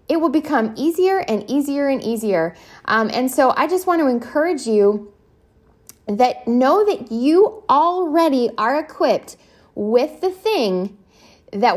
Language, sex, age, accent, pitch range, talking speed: English, female, 10-29, American, 195-255 Hz, 145 wpm